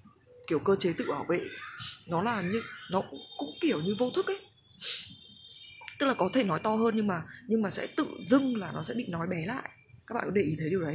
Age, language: 20-39, Vietnamese